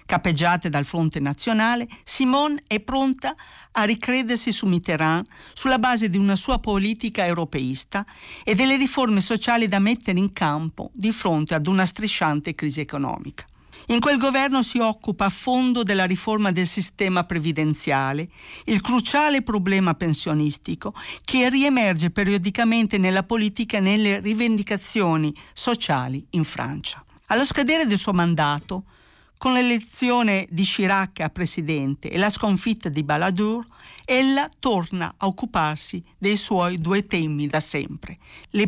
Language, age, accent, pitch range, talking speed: Italian, 50-69, native, 170-230 Hz, 135 wpm